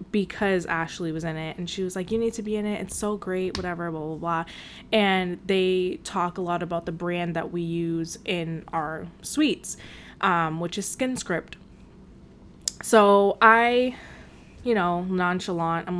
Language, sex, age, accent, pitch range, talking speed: English, female, 20-39, American, 170-205 Hz, 175 wpm